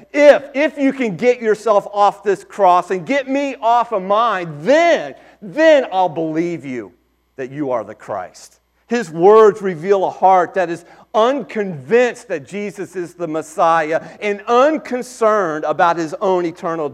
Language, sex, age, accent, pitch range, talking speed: English, male, 40-59, American, 150-215 Hz, 155 wpm